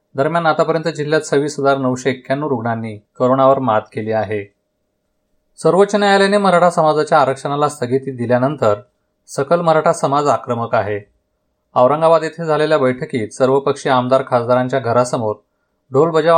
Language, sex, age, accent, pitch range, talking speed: Marathi, male, 30-49, native, 125-150 Hz, 120 wpm